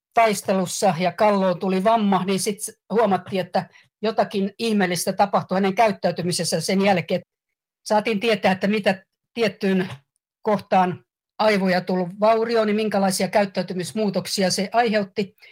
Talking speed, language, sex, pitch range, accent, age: 115 wpm, Finnish, female, 185-225 Hz, native, 50-69